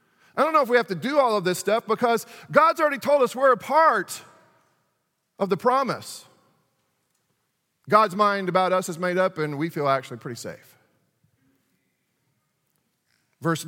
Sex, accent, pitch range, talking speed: male, American, 135-190 Hz, 160 wpm